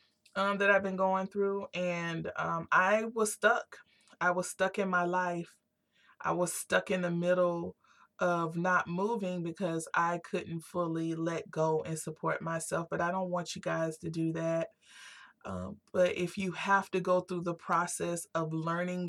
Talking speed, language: 175 wpm, English